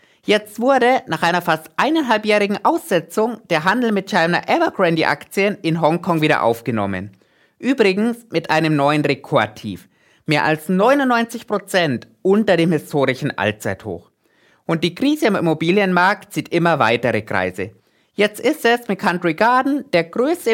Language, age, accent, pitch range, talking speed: German, 20-39, German, 155-220 Hz, 130 wpm